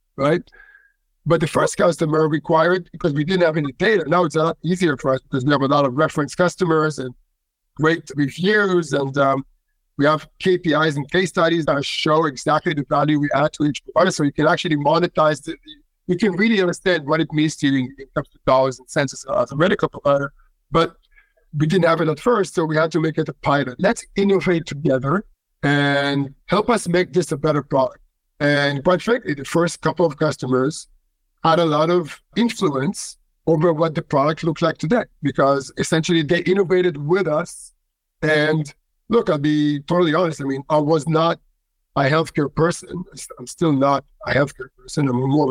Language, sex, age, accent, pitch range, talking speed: English, male, 50-69, American, 145-180 Hz, 195 wpm